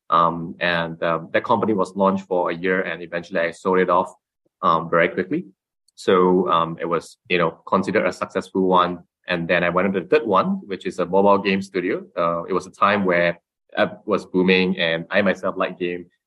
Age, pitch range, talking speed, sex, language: 20-39, 90-100 Hz, 210 wpm, male, English